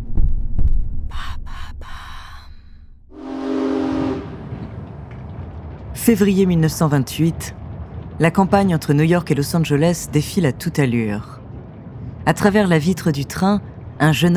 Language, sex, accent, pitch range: French, female, French, 125-175 Hz